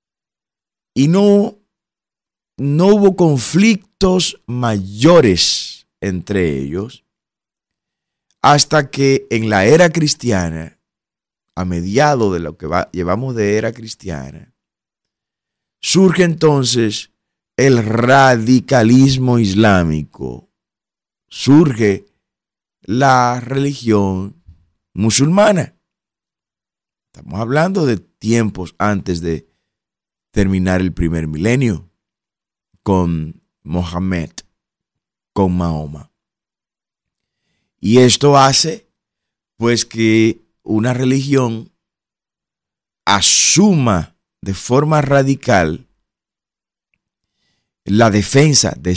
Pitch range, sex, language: 95-140 Hz, male, Spanish